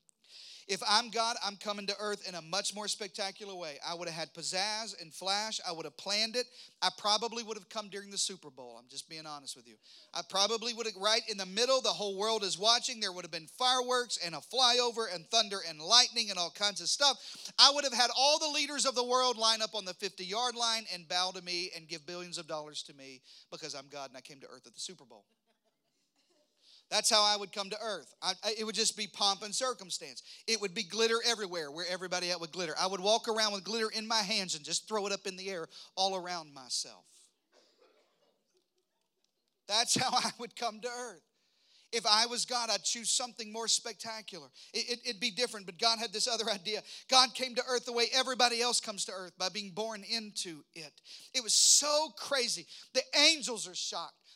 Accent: American